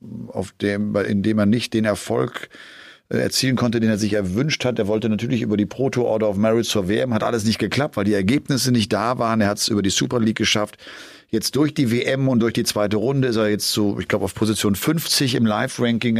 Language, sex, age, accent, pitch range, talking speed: German, male, 40-59, German, 105-140 Hz, 235 wpm